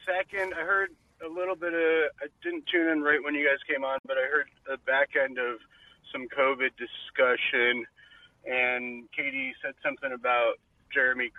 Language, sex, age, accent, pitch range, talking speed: English, male, 30-49, American, 120-185 Hz, 180 wpm